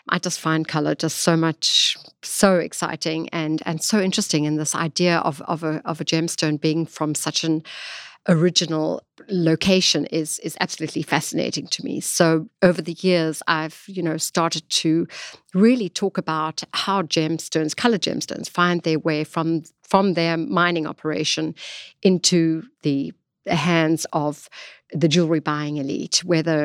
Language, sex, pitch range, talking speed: English, female, 155-180 Hz, 150 wpm